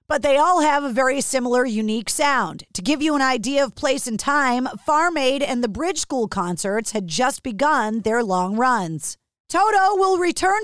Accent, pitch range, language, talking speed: American, 235-300 Hz, English, 190 wpm